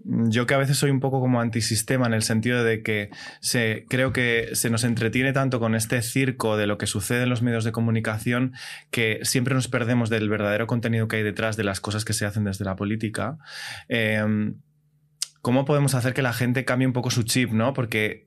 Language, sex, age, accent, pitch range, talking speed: Spanish, male, 20-39, Spanish, 110-125 Hz, 215 wpm